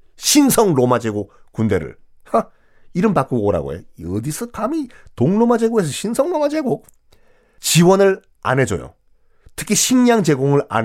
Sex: male